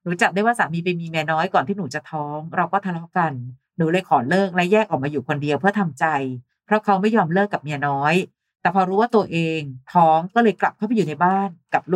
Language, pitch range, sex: Thai, 160-205 Hz, female